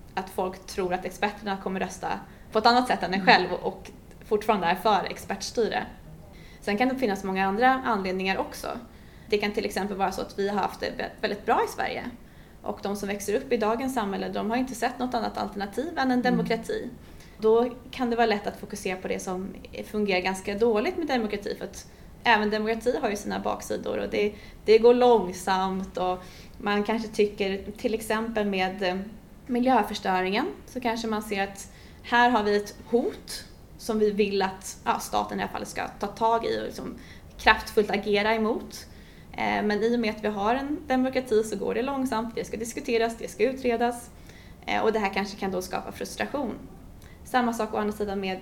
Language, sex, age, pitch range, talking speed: Swedish, female, 20-39, 195-235 Hz, 195 wpm